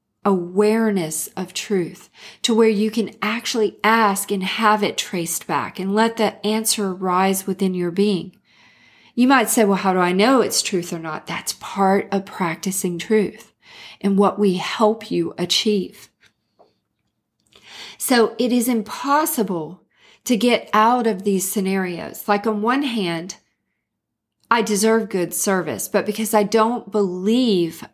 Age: 40-59